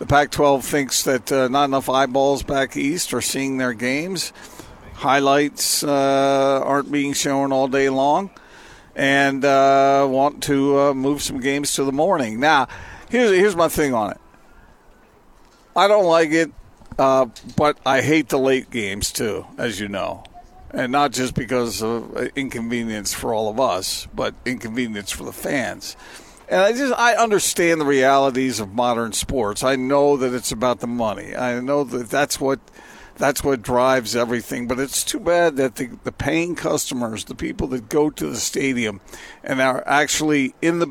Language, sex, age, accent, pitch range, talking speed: English, male, 50-69, American, 130-160 Hz, 170 wpm